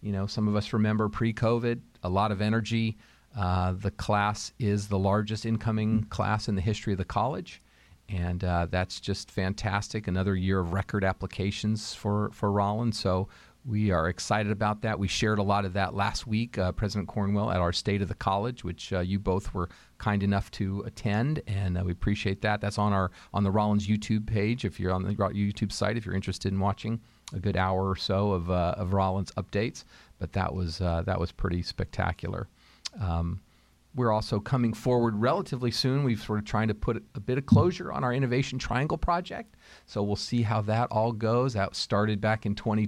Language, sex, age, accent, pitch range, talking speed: English, male, 40-59, American, 95-110 Hz, 205 wpm